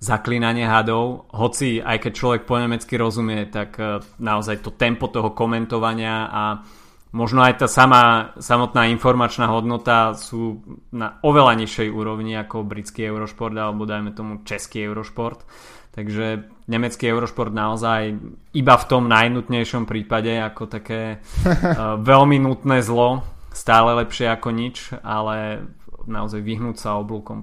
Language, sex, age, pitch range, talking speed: Slovak, male, 20-39, 110-125 Hz, 130 wpm